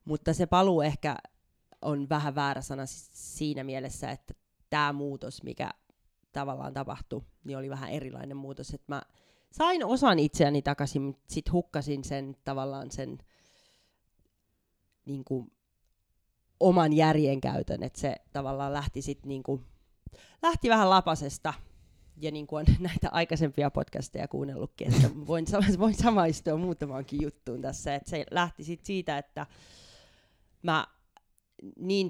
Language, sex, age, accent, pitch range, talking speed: Finnish, female, 30-49, native, 135-160 Hz, 125 wpm